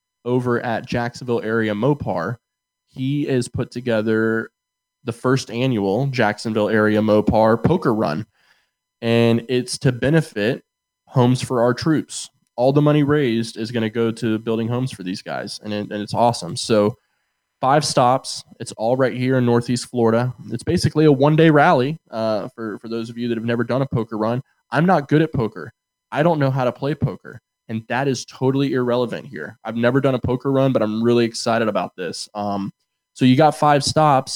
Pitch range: 115-145 Hz